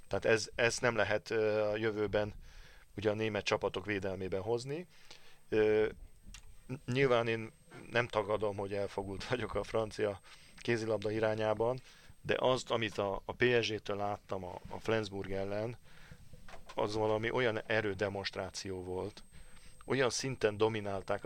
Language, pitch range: Hungarian, 100-115 Hz